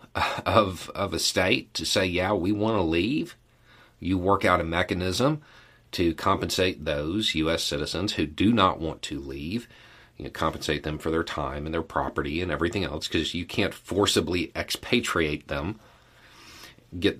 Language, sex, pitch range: English, male, 80-115 Hz